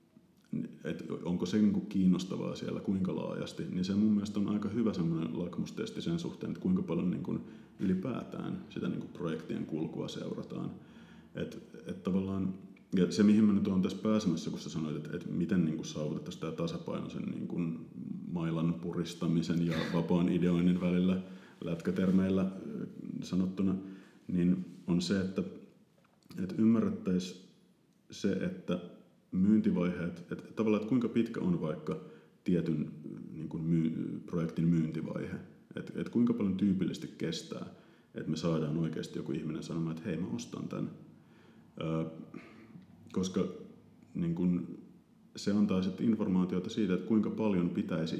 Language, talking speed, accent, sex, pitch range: Finnish, 135 wpm, native, male, 85-95 Hz